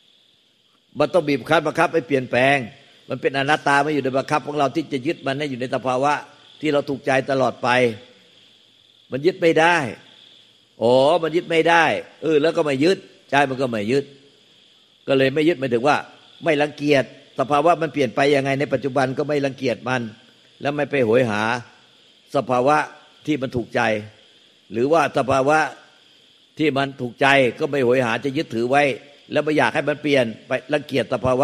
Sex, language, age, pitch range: male, Thai, 60-79, 125-150 Hz